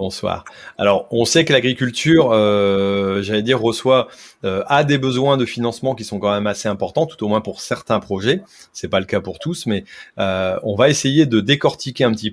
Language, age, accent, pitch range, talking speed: French, 30-49, French, 100-130 Hz, 210 wpm